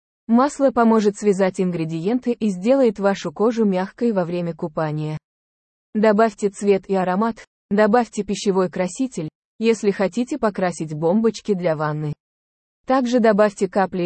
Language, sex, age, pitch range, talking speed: English, female, 20-39, 170-225 Hz, 120 wpm